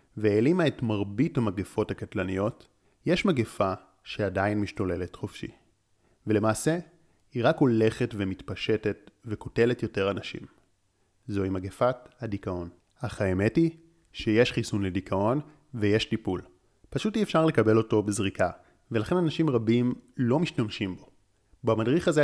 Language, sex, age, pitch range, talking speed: Hebrew, male, 30-49, 100-135 Hz, 115 wpm